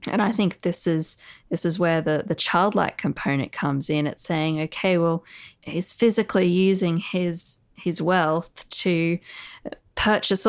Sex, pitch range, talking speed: female, 155-180 Hz, 150 wpm